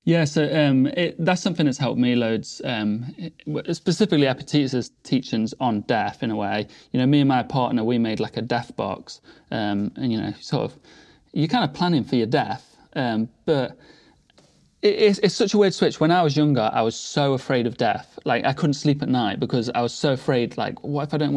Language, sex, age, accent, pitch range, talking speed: English, male, 30-49, British, 120-150 Hz, 220 wpm